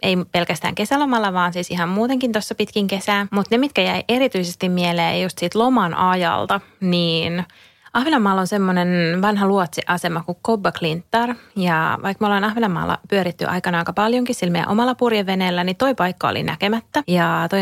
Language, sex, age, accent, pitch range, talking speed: English, female, 30-49, Finnish, 175-220 Hz, 155 wpm